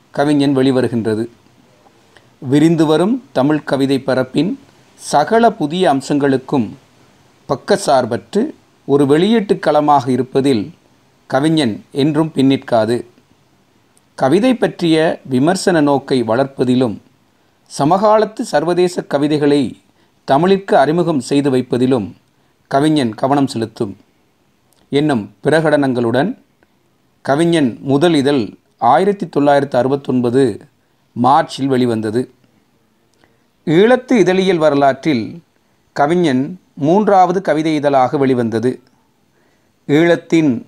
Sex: male